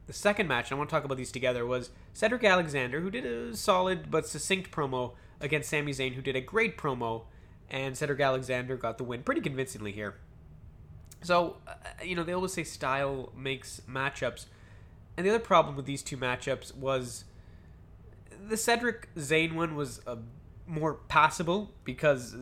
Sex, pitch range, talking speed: male, 125-160 Hz, 170 wpm